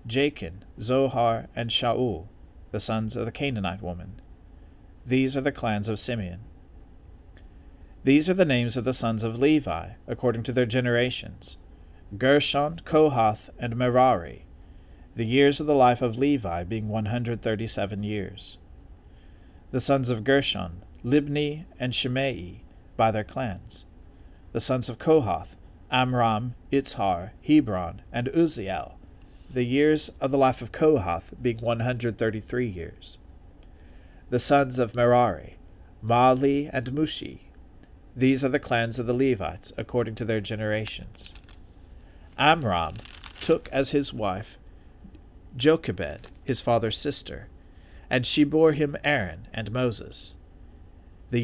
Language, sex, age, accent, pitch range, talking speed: English, male, 40-59, American, 90-130 Hz, 125 wpm